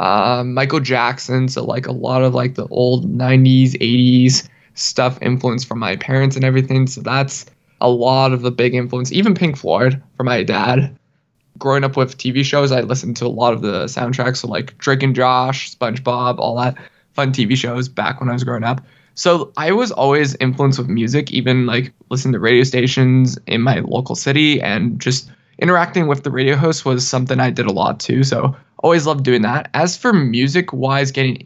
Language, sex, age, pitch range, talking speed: English, male, 20-39, 125-145 Hz, 200 wpm